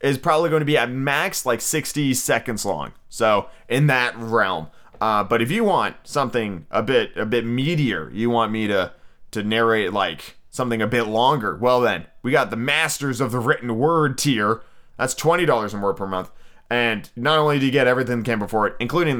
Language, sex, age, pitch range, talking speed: English, male, 30-49, 115-140 Hz, 205 wpm